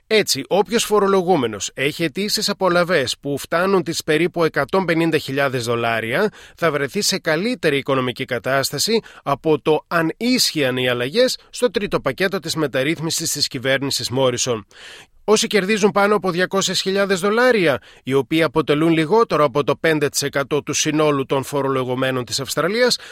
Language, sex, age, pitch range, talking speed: Greek, male, 30-49, 135-175 Hz, 130 wpm